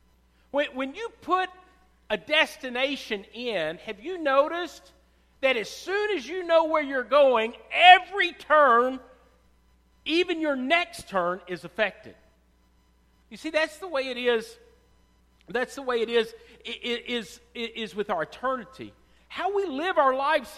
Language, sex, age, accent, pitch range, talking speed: English, male, 50-69, American, 210-300 Hz, 135 wpm